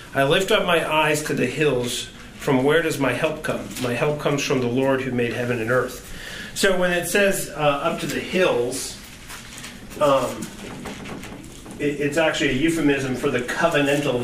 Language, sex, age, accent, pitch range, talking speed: English, male, 30-49, American, 120-150 Hz, 175 wpm